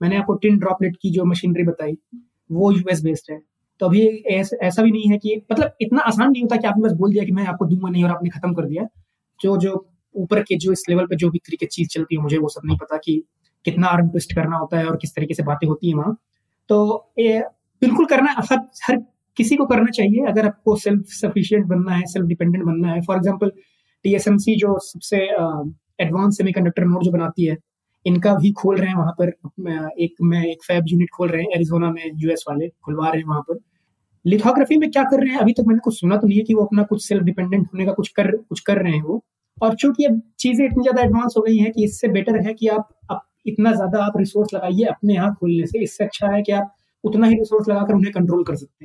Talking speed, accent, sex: 175 wpm, native, male